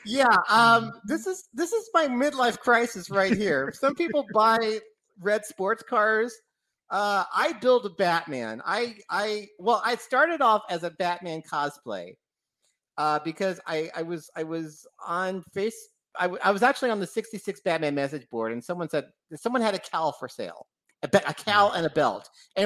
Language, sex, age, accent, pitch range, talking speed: English, male, 50-69, American, 125-210 Hz, 175 wpm